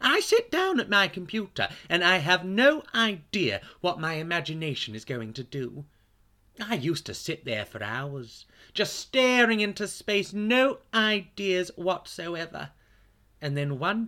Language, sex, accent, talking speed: English, male, British, 150 wpm